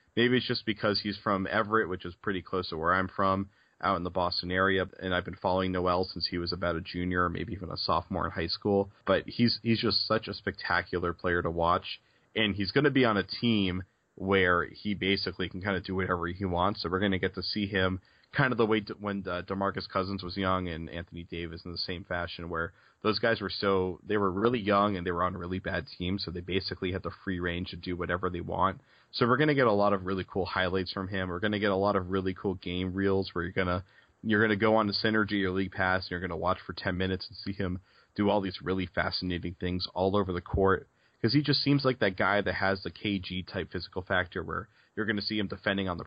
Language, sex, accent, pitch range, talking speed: English, male, American, 90-105 Hz, 265 wpm